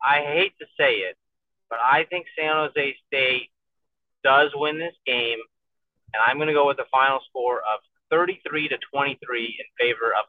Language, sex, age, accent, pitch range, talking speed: English, male, 30-49, American, 125-195 Hz, 180 wpm